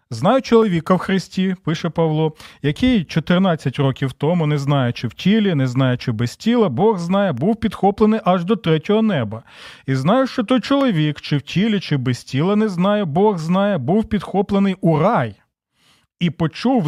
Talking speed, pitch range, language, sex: 165 wpm, 145-200 Hz, Ukrainian, male